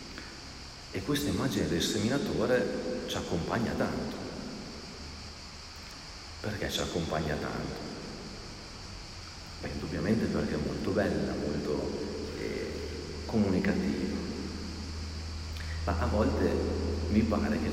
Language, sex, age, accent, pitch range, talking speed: Italian, male, 40-59, native, 75-95 Hz, 90 wpm